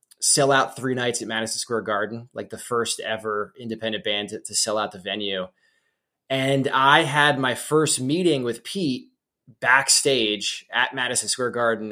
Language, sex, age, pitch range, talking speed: English, male, 20-39, 110-140 Hz, 165 wpm